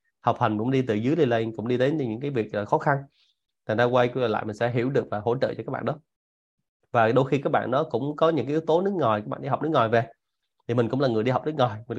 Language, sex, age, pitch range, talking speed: Vietnamese, male, 20-39, 110-140 Hz, 315 wpm